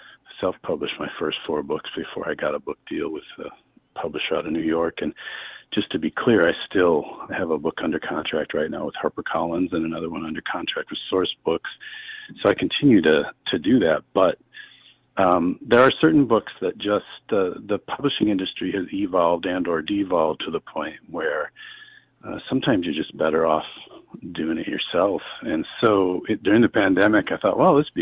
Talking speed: 195 wpm